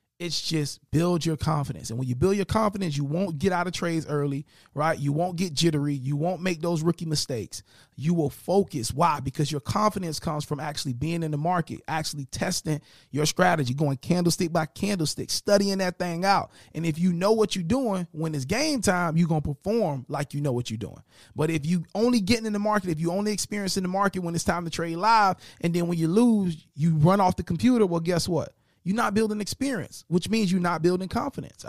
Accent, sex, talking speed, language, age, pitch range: American, male, 225 wpm, English, 30-49, 150-200 Hz